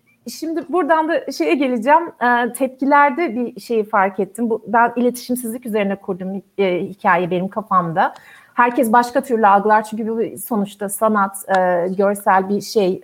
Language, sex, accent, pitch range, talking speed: German, female, Turkish, 200-275 Hz, 145 wpm